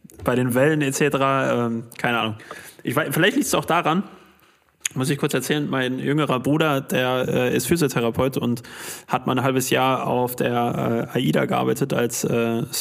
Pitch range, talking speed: 115-135 Hz, 180 wpm